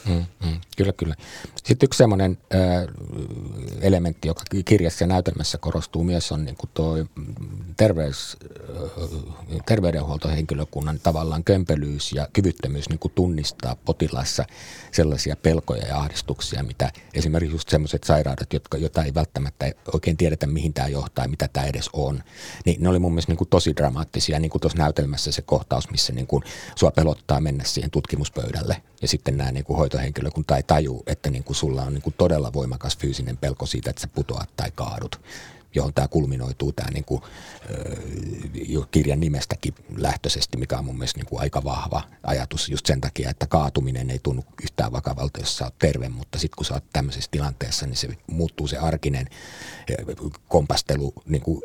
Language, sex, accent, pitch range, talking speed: Finnish, male, native, 70-90 Hz, 145 wpm